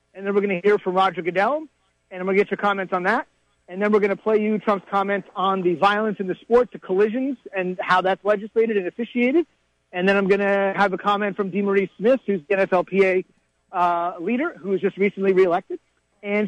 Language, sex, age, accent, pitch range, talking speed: English, male, 30-49, American, 190-225 Hz, 230 wpm